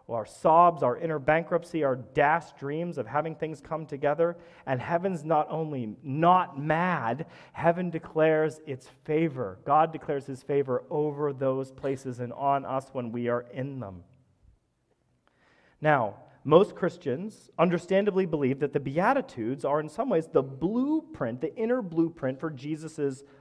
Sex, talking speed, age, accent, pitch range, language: male, 145 wpm, 40-59, American, 135-190 Hz, English